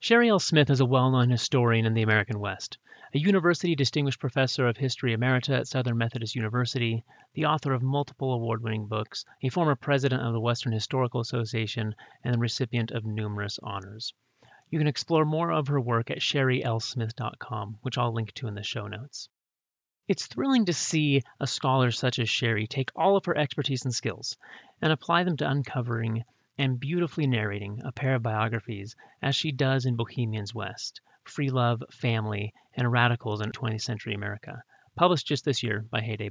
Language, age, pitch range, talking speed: English, 30-49, 115-145 Hz, 180 wpm